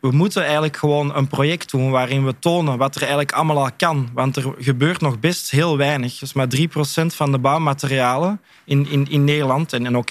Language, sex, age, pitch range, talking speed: Dutch, male, 20-39, 145-170 Hz, 220 wpm